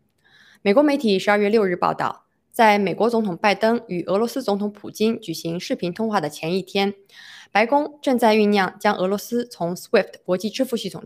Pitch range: 180-225 Hz